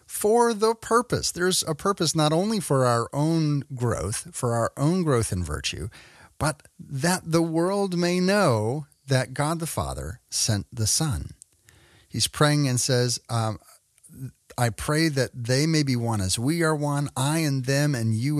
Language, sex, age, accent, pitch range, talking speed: English, male, 40-59, American, 110-155 Hz, 170 wpm